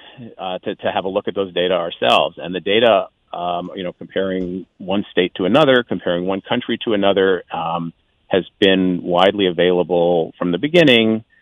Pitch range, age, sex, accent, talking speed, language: 85-100 Hz, 40-59, male, American, 180 wpm, English